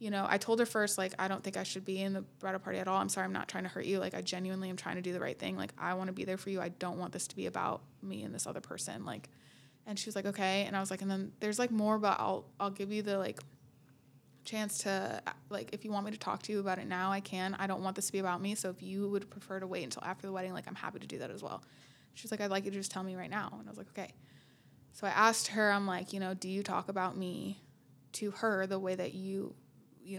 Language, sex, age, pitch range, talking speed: English, female, 20-39, 185-220 Hz, 310 wpm